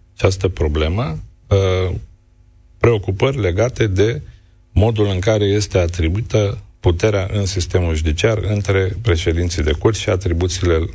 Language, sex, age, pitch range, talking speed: Romanian, male, 40-59, 85-105 Hz, 110 wpm